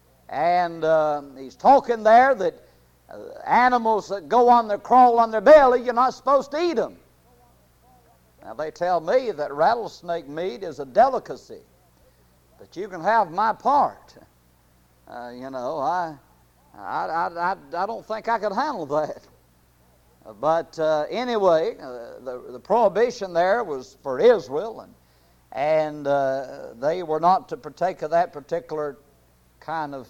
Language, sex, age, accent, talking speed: English, male, 60-79, American, 150 wpm